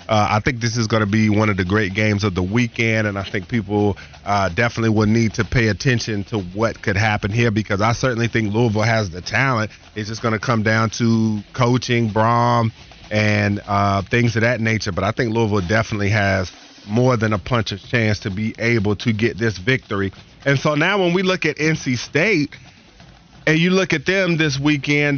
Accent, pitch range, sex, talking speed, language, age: American, 110-130 Hz, male, 215 wpm, English, 30-49